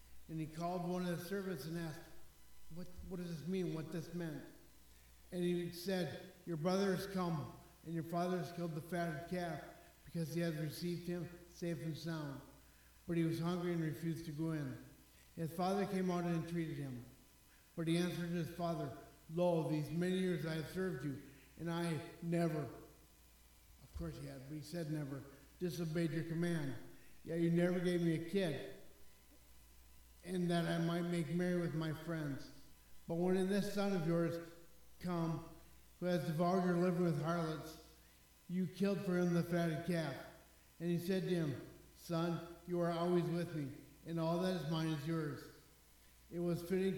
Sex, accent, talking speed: male, American, 180 wpm